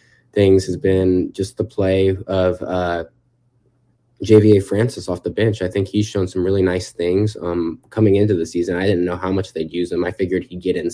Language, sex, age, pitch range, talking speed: English, male, 20-39, 90-110 Hz, 215 wpm